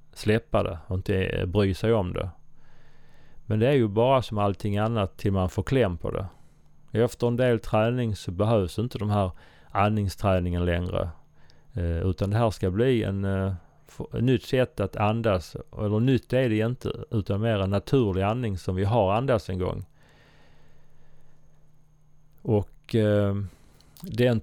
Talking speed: 150 wpm